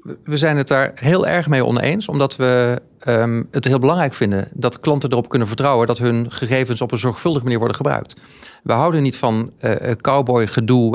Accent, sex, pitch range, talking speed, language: Dutch, male, 125-160 Hz, 195 wpm, Dutch